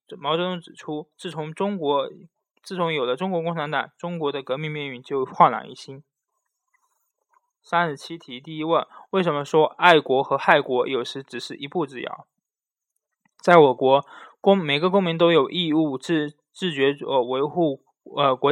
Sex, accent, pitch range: male, native, 140-170 Hz